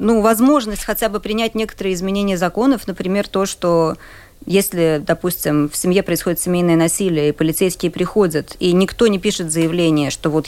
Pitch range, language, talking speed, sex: 170-220 Hz, Russian, 160 wpm, female